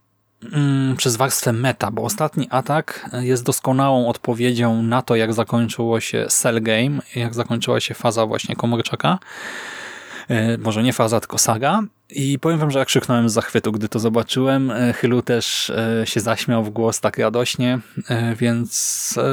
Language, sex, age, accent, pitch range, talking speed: Polish, male, 20-39, native, 115-130 Hz, 145 wpm